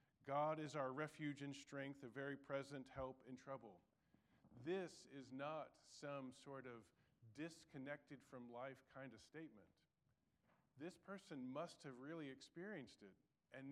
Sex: male